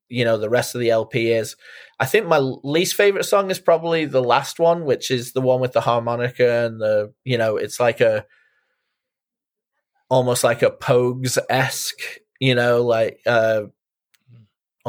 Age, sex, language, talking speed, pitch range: 20-39, male, English, 165 wpm, 120-145 Hz